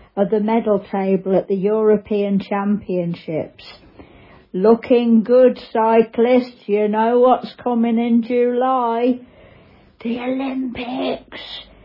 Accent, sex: British, female